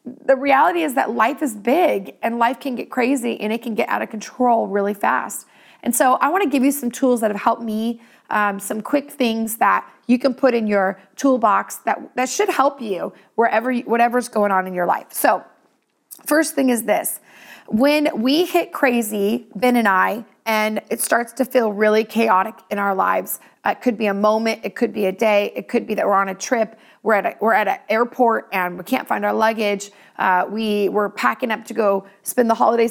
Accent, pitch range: American, 210-270 Hz